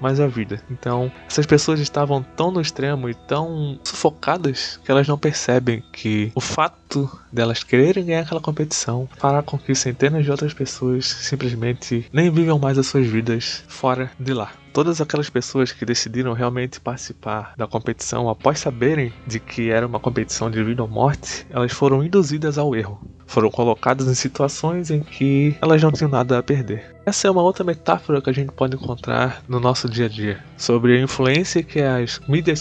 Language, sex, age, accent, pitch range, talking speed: Portuguese, male, 20-39, Brazilian, 125-150 Hz, 185 wpm